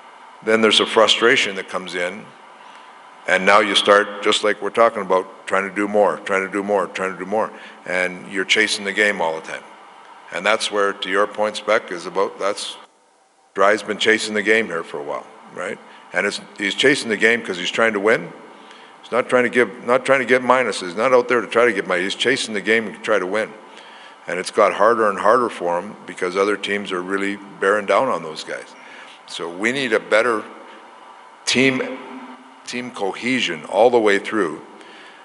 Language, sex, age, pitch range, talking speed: English, male, 50-69, 95-110 Hz, 210 wpm